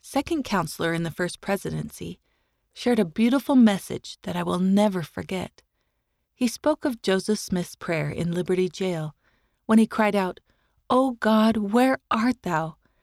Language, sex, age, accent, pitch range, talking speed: English, female, 30-49, American, 175-235 Hz, 150 wpm